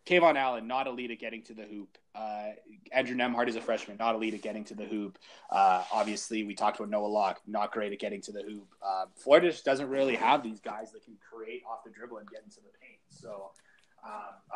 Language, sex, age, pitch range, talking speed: English, male, 20-39, 110-145 Hz, 235 wpm